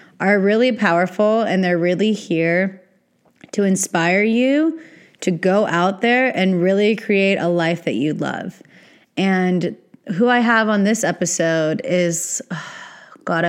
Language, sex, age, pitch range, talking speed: English, female, 20-39, 170-195 Hz, 140 wpm